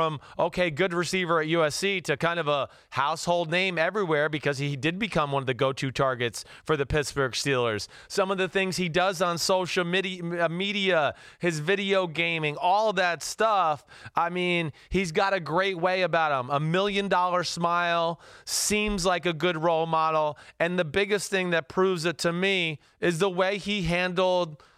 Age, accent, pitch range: 30-49, American, 155-185 Hz